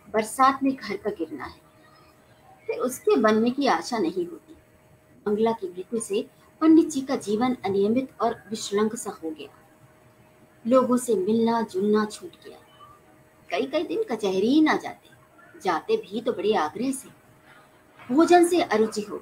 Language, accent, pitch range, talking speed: Hindi, native, 210-330 Hz, 140 wpm